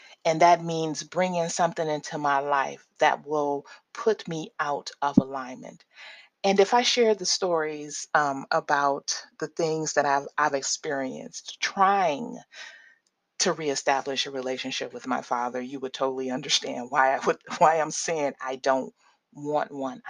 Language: English